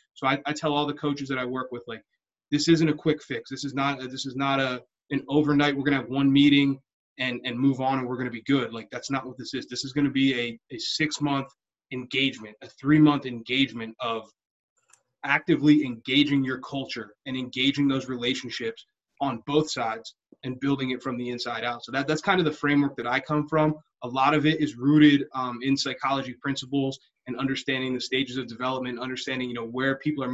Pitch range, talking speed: 130-150 Hz, 225 wpm